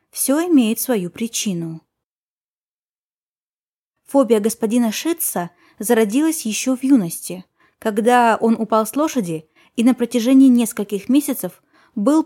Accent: native